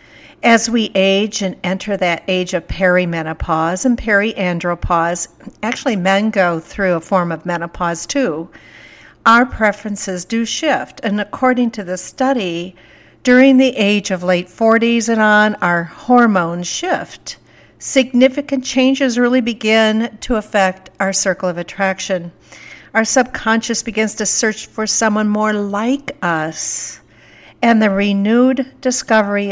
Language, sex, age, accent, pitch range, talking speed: English, female, 60-79, American, 180-235 Hz, 130 wpm